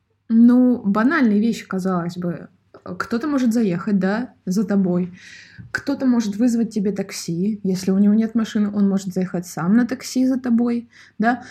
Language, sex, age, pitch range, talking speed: Russian, female, 20-39, 185-230 Hz, 155 wpm